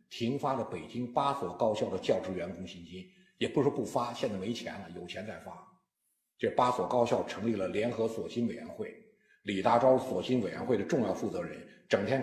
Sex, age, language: male, 50-69, Chinese